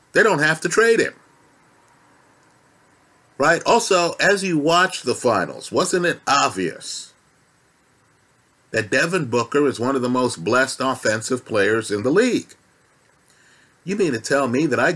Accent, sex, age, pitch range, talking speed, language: American, male, 50-69, 130-170 Hz, 150 wpm, English